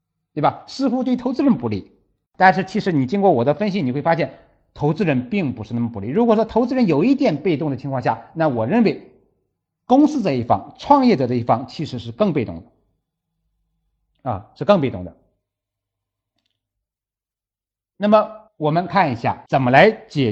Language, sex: Chinese, male